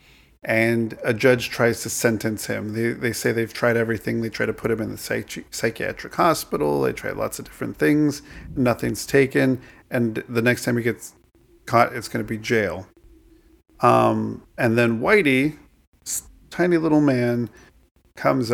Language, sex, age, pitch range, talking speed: English, male, 50-69, 110-125 Hz, 165 wpm